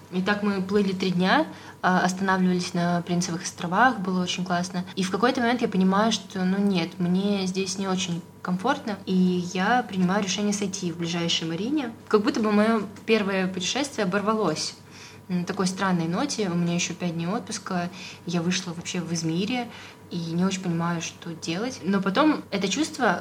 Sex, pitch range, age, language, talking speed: female, 175-205 Hz, 20-39, Russian, 175 wpm